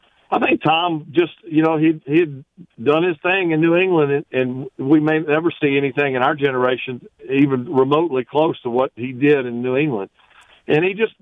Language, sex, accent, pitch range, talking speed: English, male, American, 125-160 Hz, 200 wpm